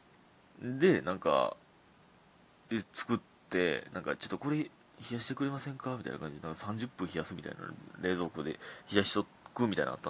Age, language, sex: 30-49, Japanese, male